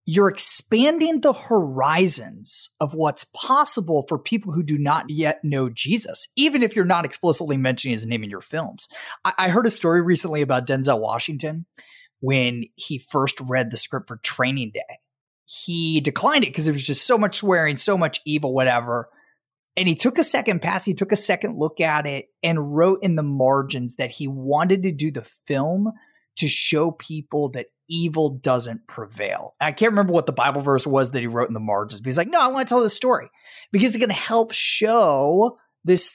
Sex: male